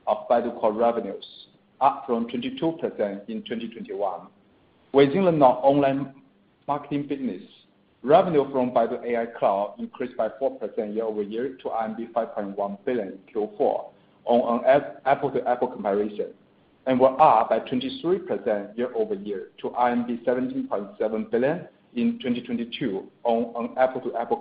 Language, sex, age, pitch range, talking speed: English, male, 50-69, 115-150 Hz, 135 wpm